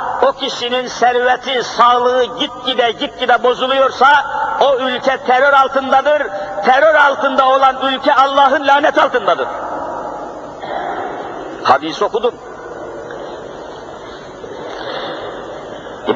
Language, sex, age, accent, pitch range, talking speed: Turkish, male, 50-69, native, 255-295 Hz, 80 wpm